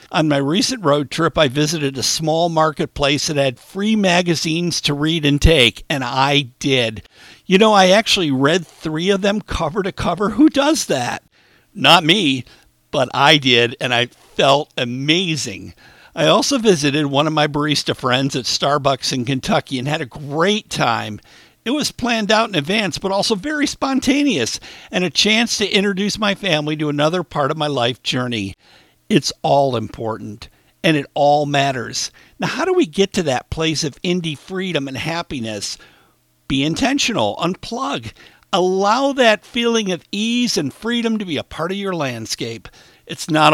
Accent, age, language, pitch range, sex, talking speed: American, 60-79, English, 135-195 Hz, male, 170 wpm